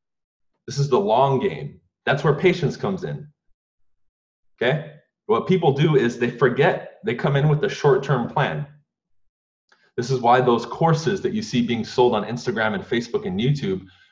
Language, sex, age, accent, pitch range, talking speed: English, male, 20-39, American, 125-175 Hz, 170 wpm